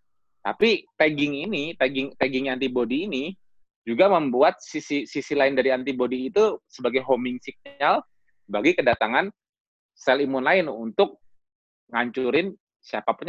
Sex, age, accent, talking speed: male, 20-39, native, 115 wpm